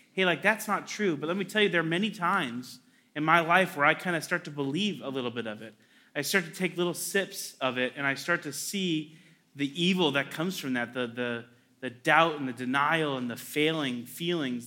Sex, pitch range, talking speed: male, 140-185 Hz, 240 wpm